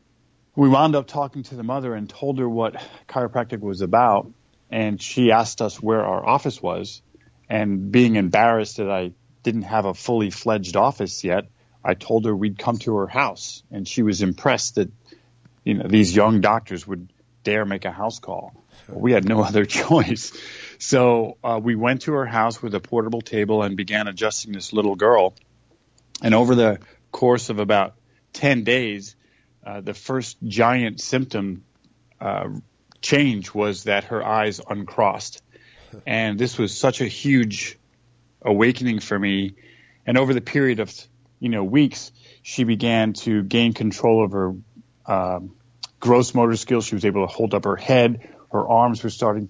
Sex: male